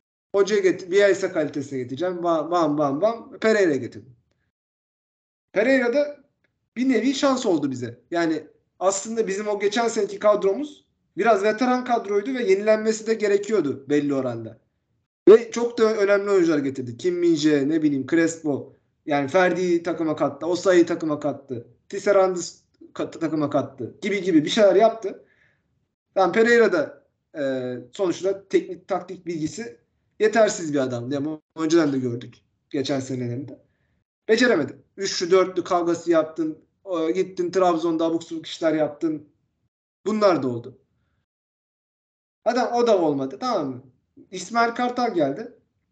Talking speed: 130 wpm